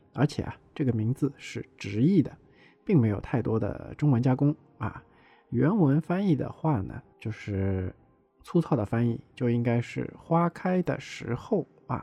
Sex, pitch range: male, 105-145 Hz